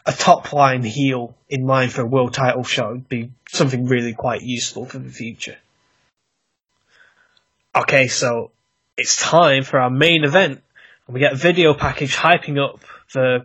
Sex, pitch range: male, 135-175 Hz